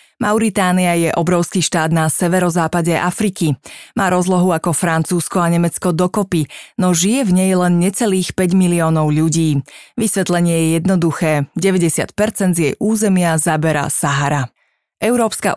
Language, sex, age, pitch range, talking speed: Slovak, female, 20-39, 165-190 Hz, 125 wpm